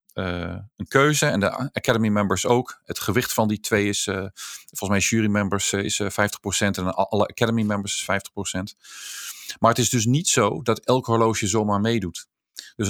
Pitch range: 100-125 Hz